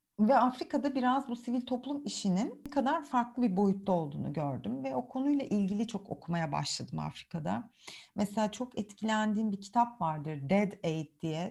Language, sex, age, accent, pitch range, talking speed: Turkish, female, 40-59, native, 165-215 Hz, 160 wpm